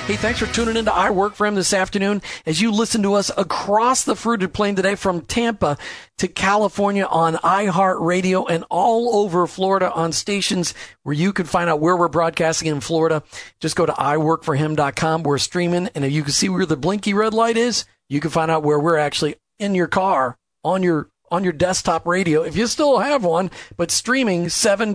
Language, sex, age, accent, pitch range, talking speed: English, male, 40-59, American, 155-205 Hz, 205 wpm